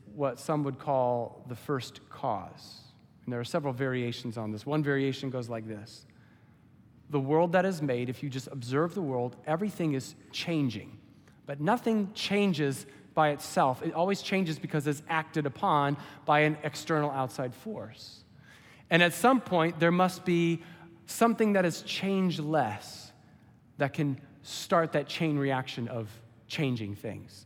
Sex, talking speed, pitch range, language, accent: male, 155 wpm, 130-175 Hz, English, American